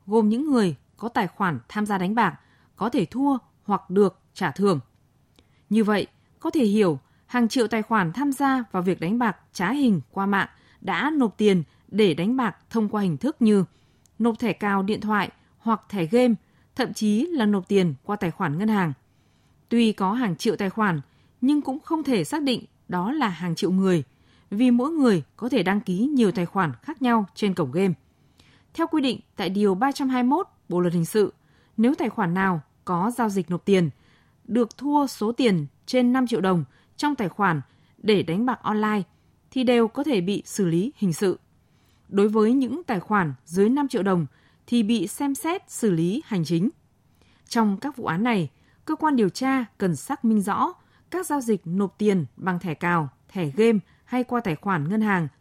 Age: 20-39